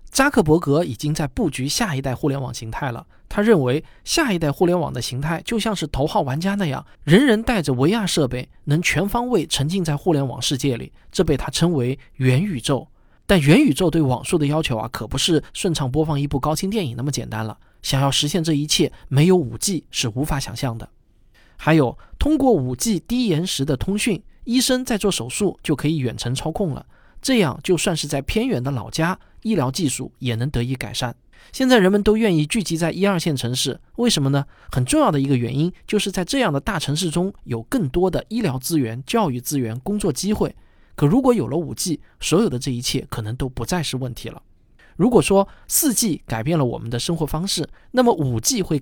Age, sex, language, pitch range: 20-39, male, Chinese, 130-185 Hz